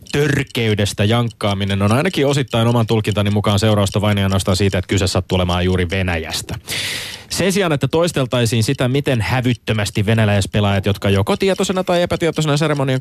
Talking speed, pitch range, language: 140 wpm, 100-140 Hz, Finnish